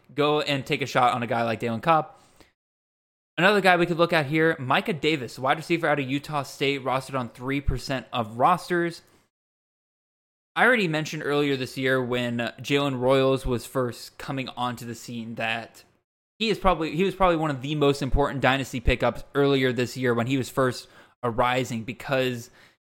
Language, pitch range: English, 125-150 Hz